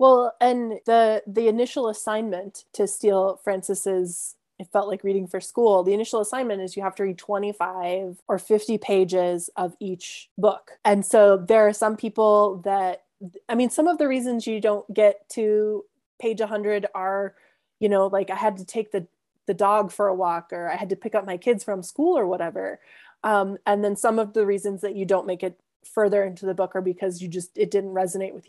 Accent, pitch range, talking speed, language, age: American, 190-225 Hz, 210 wpm, English, 20-39